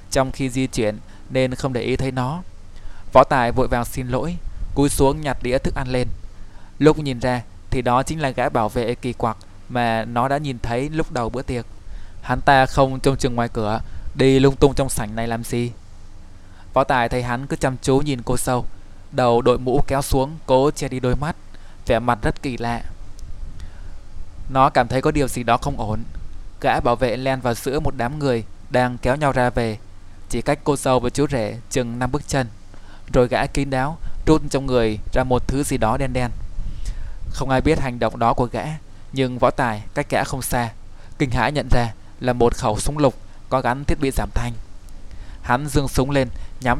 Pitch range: 105-135 Hz